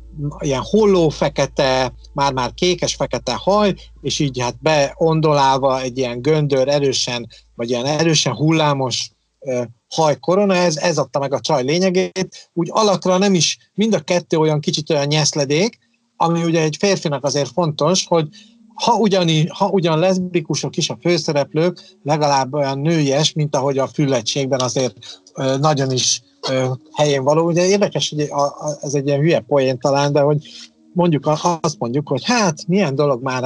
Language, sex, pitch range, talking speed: Hungarian, male, 125-175 Hz, 150 wpm